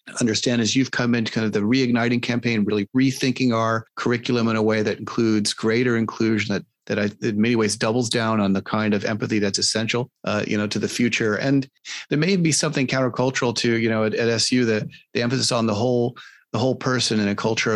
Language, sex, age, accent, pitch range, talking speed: English, male, 40-59, American, 105-130 Hz, 225 wpm